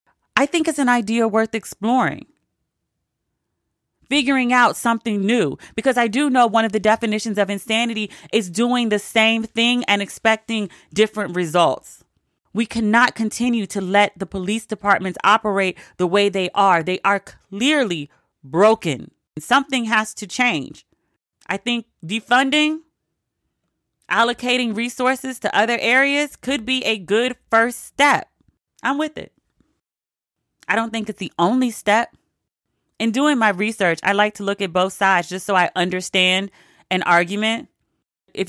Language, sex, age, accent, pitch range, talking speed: English, female, 30-49, American, 185-230 Hz, 145 wpm